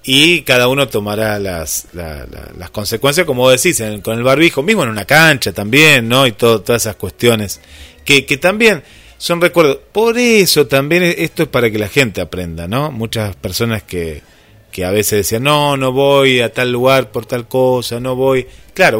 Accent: Argentinian